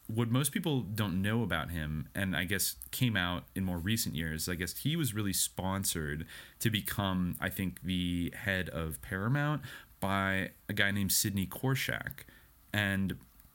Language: English